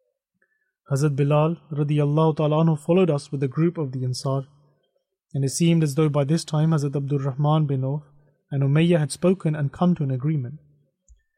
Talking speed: 170 wpm